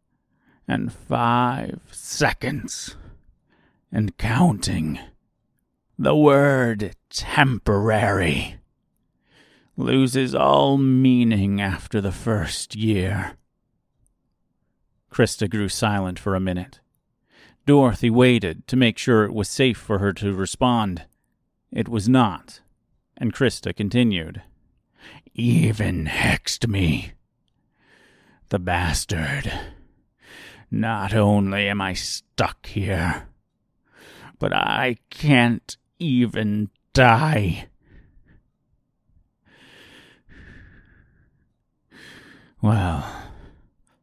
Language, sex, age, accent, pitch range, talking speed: English, male, 40-59, American, 100-125 Hz, 75 wpm